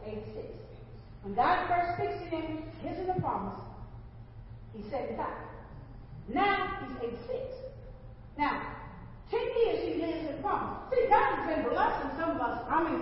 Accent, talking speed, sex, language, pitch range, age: American, 155 wpm, female, English, 285-400 Hz, 40-59